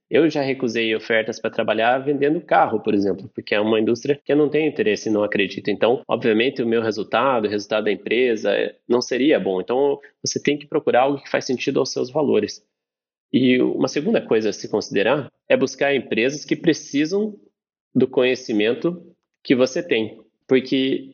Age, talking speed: 30-49, 180 wpm